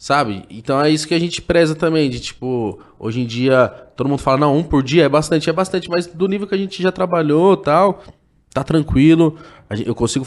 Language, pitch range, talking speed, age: Portuguese, 120-160 Hz, 220 wpm, 20-39